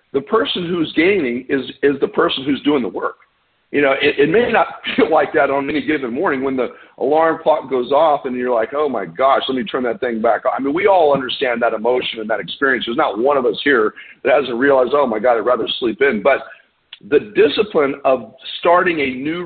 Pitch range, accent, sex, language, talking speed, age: 135-215 Hz, American, male, English, 235 wpm, 50-69